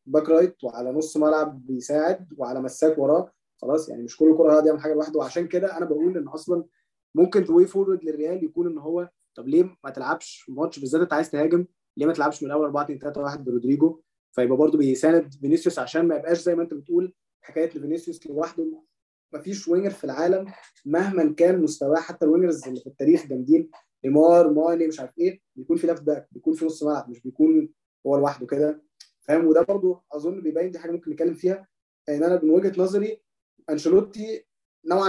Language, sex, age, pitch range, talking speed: Arabic, male, 20-39, 150-180 Hz, 190 wpm